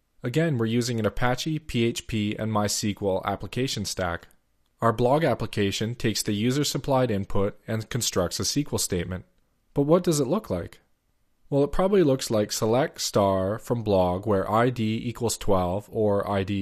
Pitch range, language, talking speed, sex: 100-135 Hz, English, 155 wpm, male